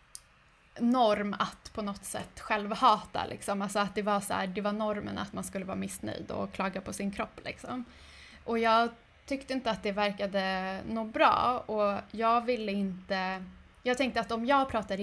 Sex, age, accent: female, 20-39, Swedish